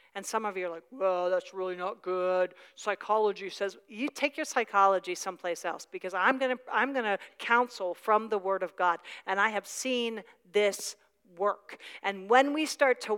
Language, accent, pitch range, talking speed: English, American, 185-275 Hz, 185 wpm